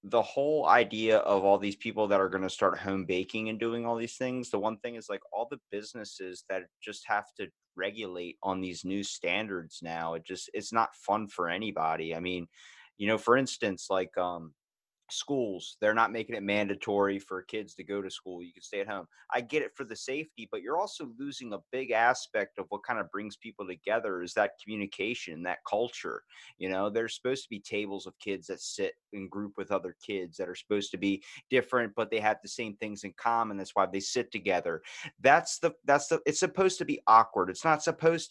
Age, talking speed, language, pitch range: 30-49, 220 wpm, English, 100-145 Hz